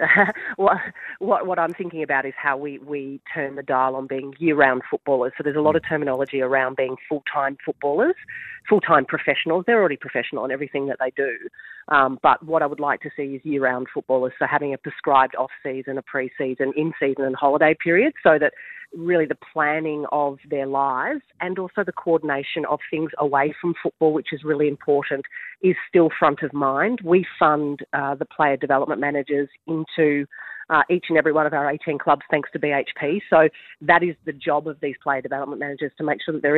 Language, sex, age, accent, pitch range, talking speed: English, female, 40-59, Australian, 140-160 Hz, 195 wpm